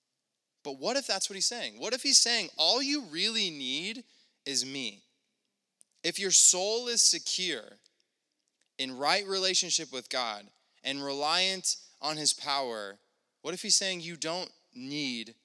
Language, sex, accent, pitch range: English, male, American, 125-170 Hz